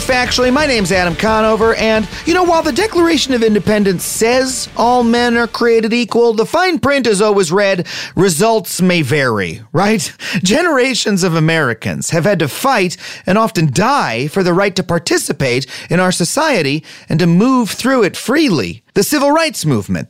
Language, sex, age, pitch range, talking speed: English, male, 40-59, 165-250 Hz, 170 wpm